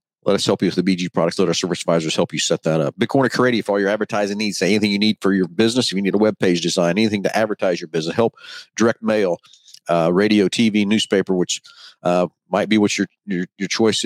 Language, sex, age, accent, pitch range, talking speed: English, male, 50-69, American, 95-115 Hz, 255 wpm